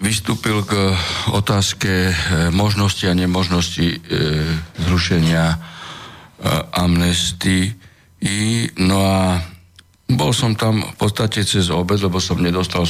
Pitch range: 85-105 Hz